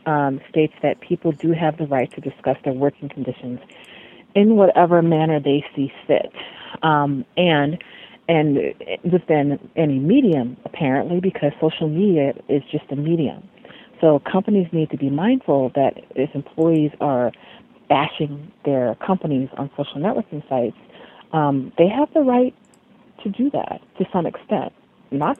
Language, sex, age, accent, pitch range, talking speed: English, female, 40-59, American, 140-185 Hz, 145 wpm